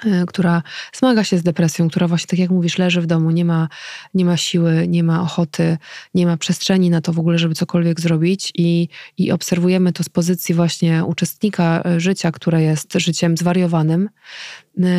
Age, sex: 20-39, female